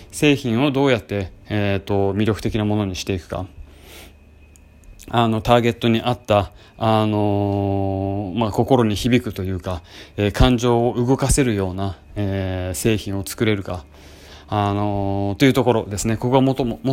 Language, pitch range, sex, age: Japanese, 95-120 Hz, male, 20-39